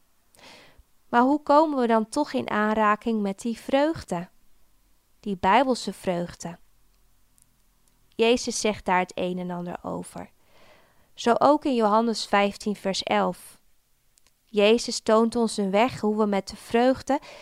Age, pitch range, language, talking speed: 20-39, 200-245 Hz, Dutch, 135 wpm